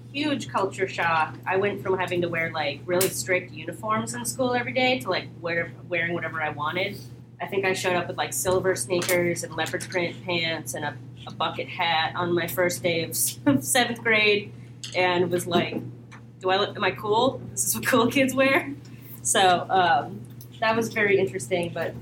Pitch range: 125-185 Hz